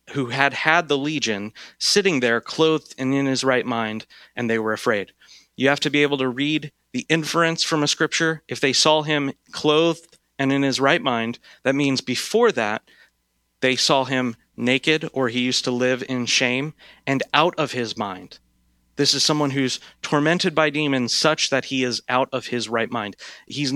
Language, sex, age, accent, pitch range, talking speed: English, male, 30-49, American, 115-145 Hz, 190 wpm